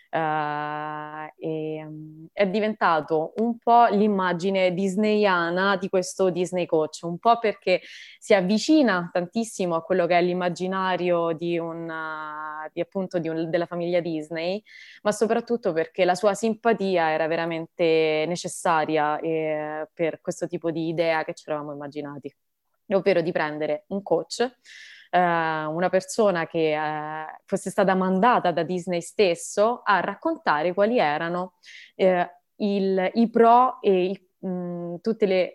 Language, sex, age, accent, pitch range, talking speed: English, female, 20-39, Italian, 155-195 Hz, 110 wpm